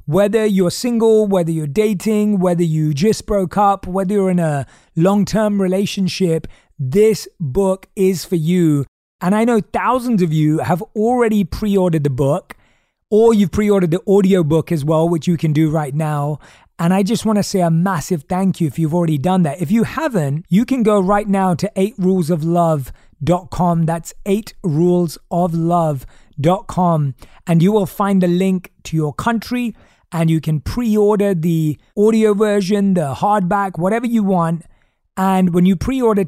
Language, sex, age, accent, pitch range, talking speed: English, male, 30-49, British, 155-200 Hz, 165 wpm